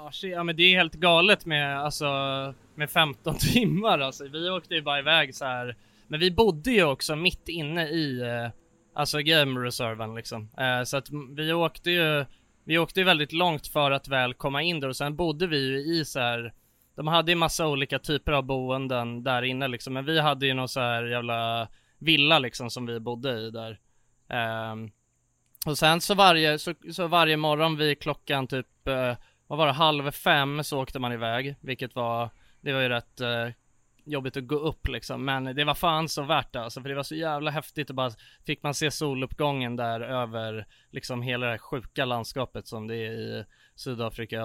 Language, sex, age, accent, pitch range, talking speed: English, male, 20-39, Swedish, 120-155 Hz, 195 wpm